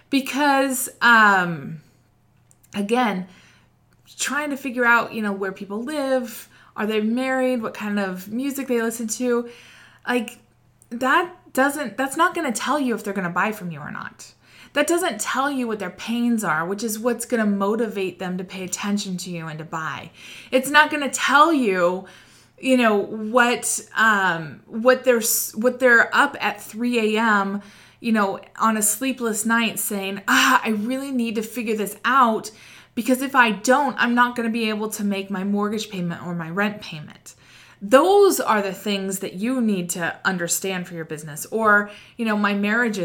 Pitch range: 195-250 Hz